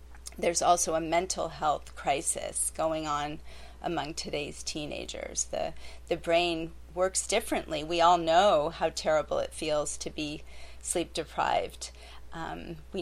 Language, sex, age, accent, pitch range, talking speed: English, female, 40-59, American, 150-180 Hz, 130 wpm